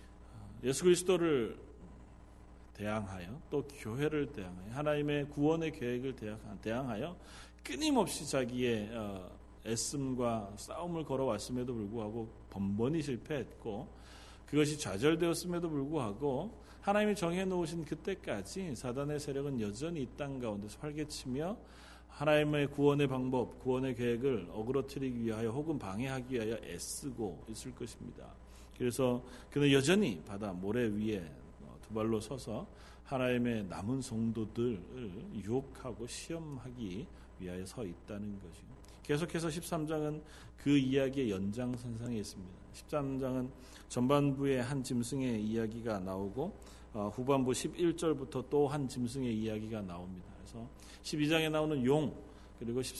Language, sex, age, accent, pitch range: Korean, male, 40-59, native, 110-145 Hz